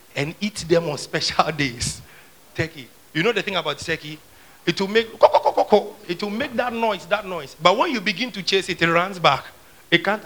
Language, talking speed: English, 210 wpm